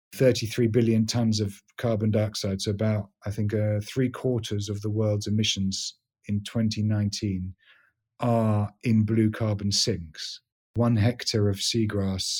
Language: English